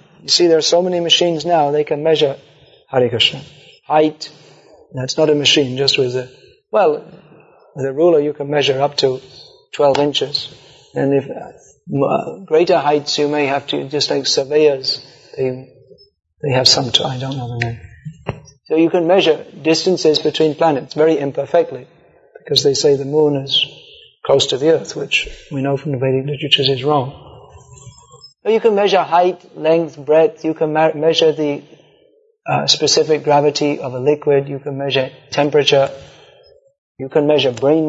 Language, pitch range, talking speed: English, 140-175 Hz, 170 wpm